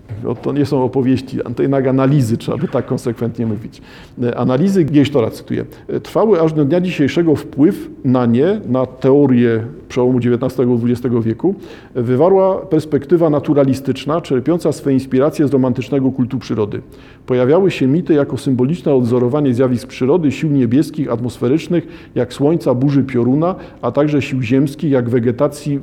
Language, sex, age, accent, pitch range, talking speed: Polish, male, 50-69, native, 125-150 Hz, 140 wpm